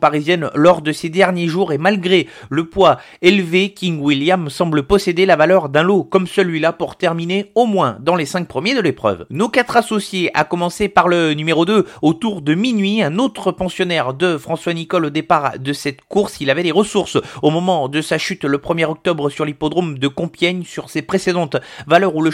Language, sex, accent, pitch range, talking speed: French, male, French, 160-195 Hz, 205 wpm